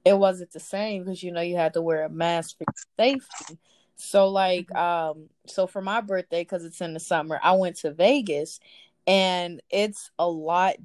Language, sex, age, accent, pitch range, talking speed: English, female, 20-39, American, 165-195 Hz, 195 wpm